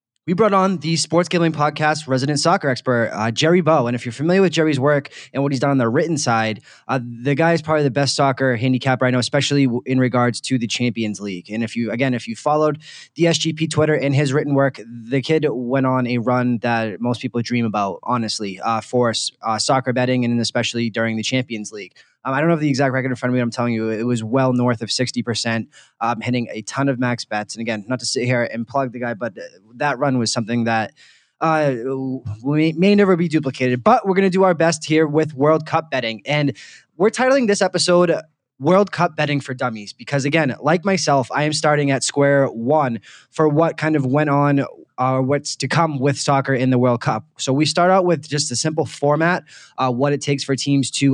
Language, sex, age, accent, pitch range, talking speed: English, male, 20-39, American, 120-155 Hz, 230 wpm